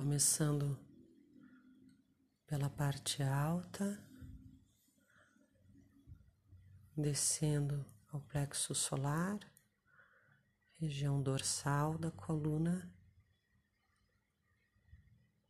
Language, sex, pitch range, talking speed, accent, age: Portuguese, female, 105-165 Hz, 45 wpm, Brazilian, 40-59